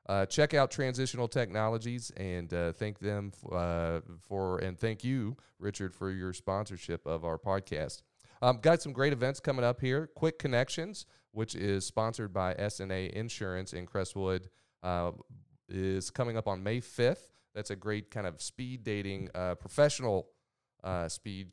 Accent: American